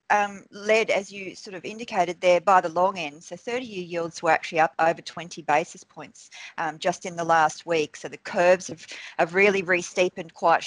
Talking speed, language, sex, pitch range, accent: 200 wpm, English, female, 170-205 Hz, Australian